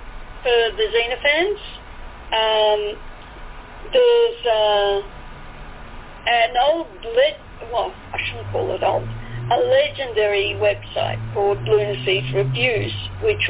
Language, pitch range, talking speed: English, 200-280 Hz, 100 wpm